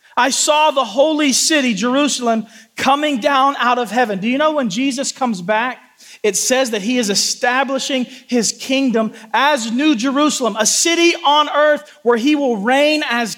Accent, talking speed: American, 170 wpm